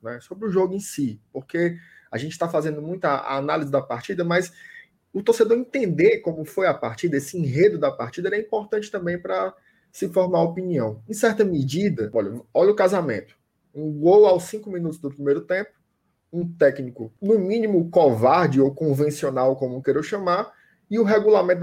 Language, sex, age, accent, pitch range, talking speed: Portuguese, male, 20-39, Brazilian, 145-205 Hz, 180 wpm